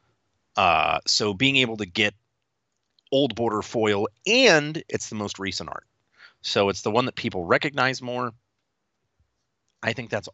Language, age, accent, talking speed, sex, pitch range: English, 30-49, American, 150 wpm, male, 95-120 Hz